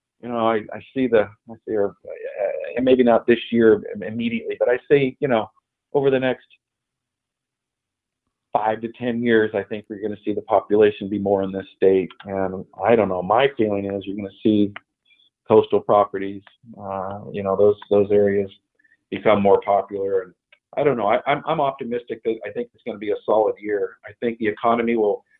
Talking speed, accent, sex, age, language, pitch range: 190 wpm, American, male, 40-59, English, 105-135 Hz